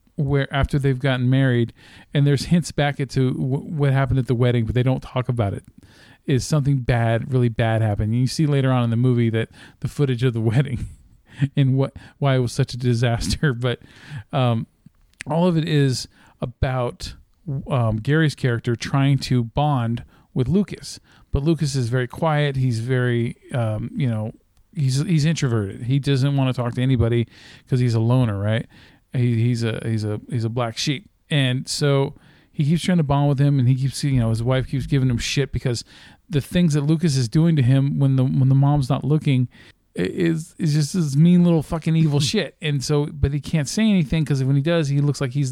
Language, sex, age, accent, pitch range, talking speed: English, male, 40-59, American, 120-145 Hz, 205 wpm